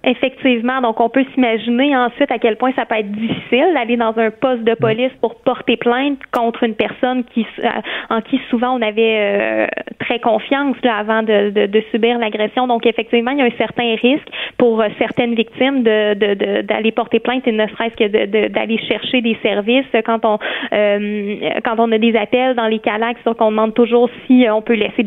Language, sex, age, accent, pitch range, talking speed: French, female, 20-39, Canadian, 225-255 Hz, 205 wpm